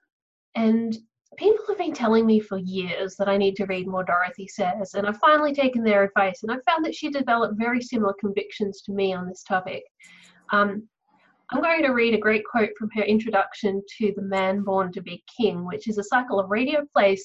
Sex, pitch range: female, 200-270 Hz